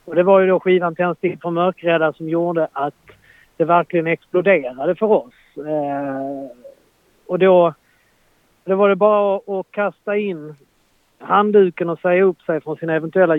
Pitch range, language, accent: 150-185 Hz, Swedish, native